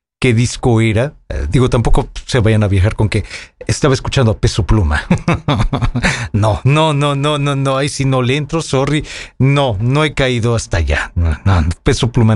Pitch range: 110-150 Hz